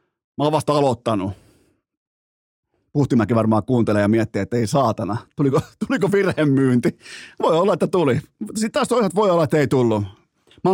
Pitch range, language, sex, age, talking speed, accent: 115-160 Hz, Finnish, male, 30-49, 150 wpm, native